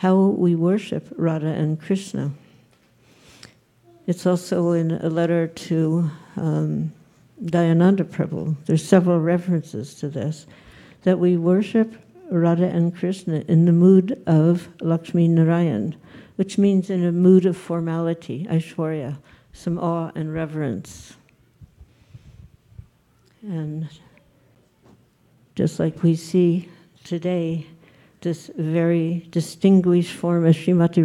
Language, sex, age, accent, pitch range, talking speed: English, female, 60-79, American, 160-180 Hz, 110 wpm